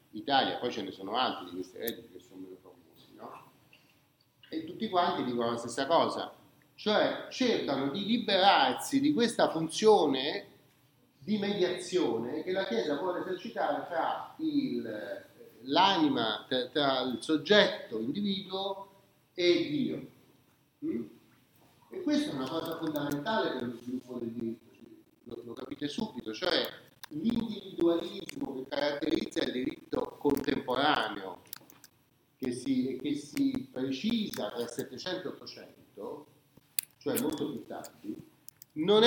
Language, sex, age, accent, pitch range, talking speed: Italian, male, 40-59, native, 140-225 Hz, 125 wpm